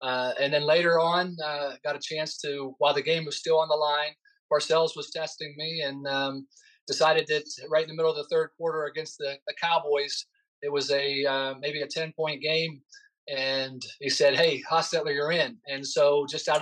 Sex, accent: male, American